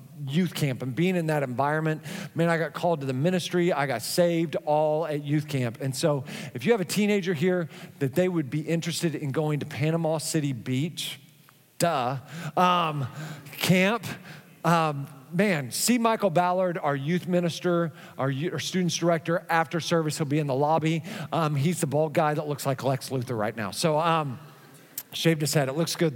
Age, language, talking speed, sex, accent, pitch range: 40-59, English, 190 wpm, male, American, 155-210 Hz